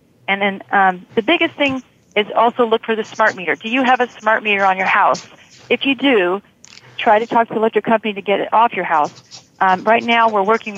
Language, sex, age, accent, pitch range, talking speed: English, female, 40-59, American, 185-220 Hz, 240 wpm